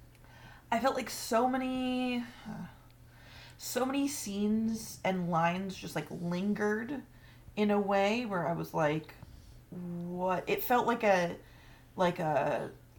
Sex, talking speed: female, 130 wpm